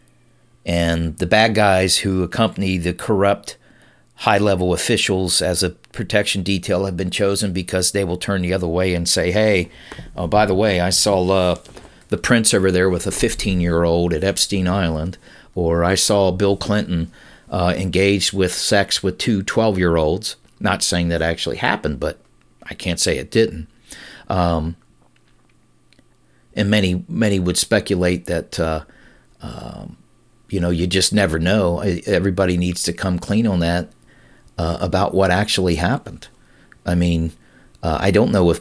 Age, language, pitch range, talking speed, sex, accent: 50-69, English, 85-100 Hz, 155 wpm, male, American